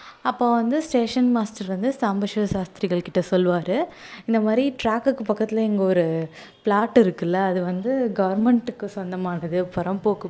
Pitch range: 185-230 Hz